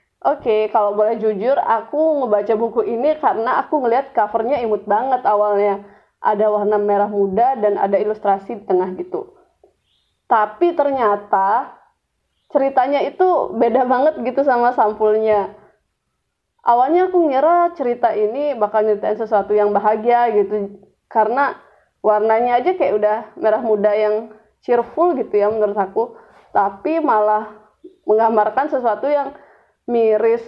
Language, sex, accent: Indonesian, female, native